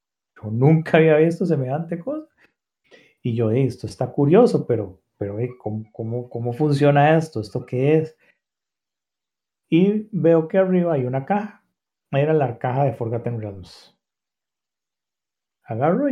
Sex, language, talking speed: male, Spanish, 135 wpm